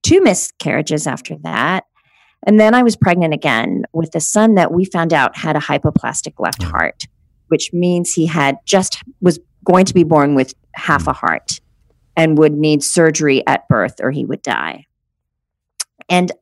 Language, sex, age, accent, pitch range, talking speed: English, female, 40-59, American, 160-205 Hz, 170 wpm